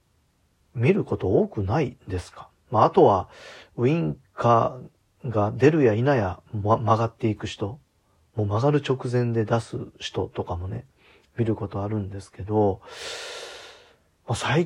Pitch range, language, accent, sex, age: 95-125 Hz, Japanese, native, male, 40-59